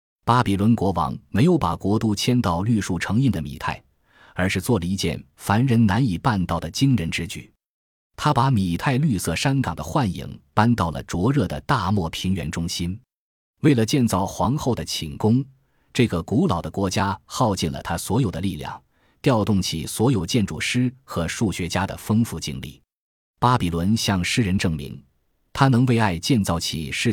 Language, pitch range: Chinese, 85-120 Hz